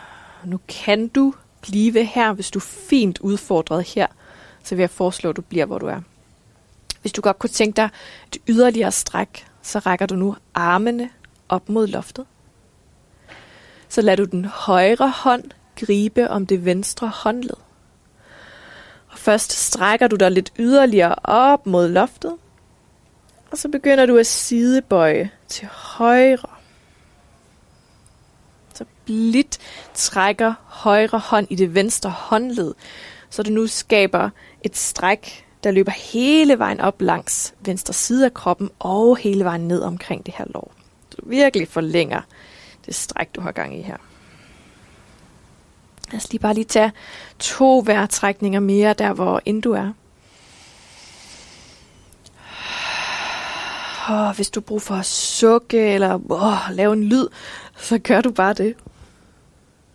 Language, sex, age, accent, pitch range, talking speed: Danish, female, 20-39, native, 195-245 Hz, 140 wpm